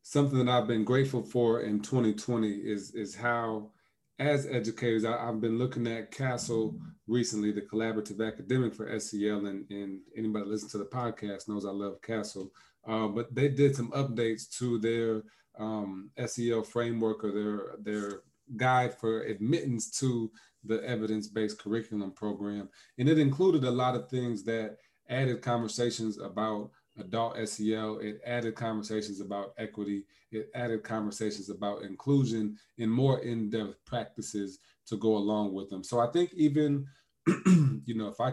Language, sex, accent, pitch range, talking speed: English, male, American, 105-120 Hz, 150 wpm